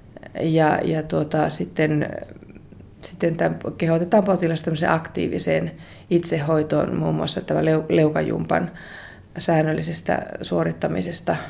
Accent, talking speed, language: native, 75 wpm, Finnish